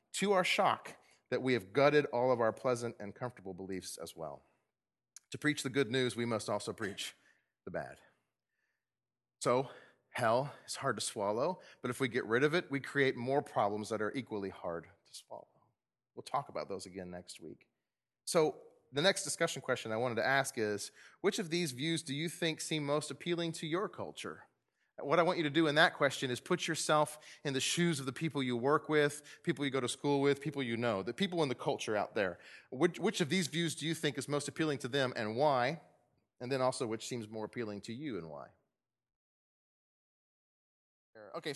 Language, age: English, 30-49